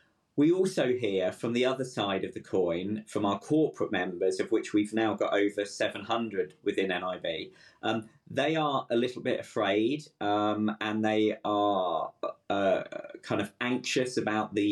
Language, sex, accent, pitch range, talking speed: English, male, British, 105-130 Hz, 165 wpm